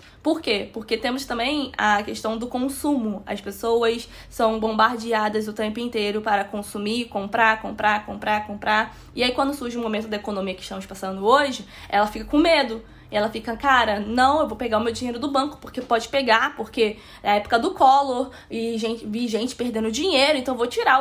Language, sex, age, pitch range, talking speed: Portuguese, female, 10-29, 220-320 Hz, 200 wpm